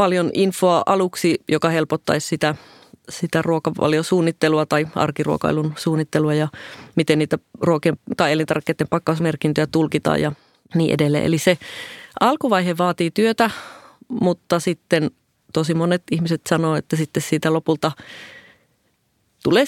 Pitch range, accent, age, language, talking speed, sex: 150-175 Hz, native, 30-49, Finnish, 110 wpm, female